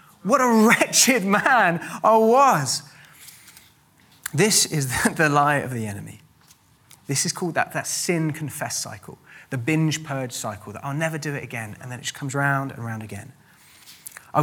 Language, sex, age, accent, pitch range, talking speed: English, male, 30-49, British, 110-150 Hz, 170 wpm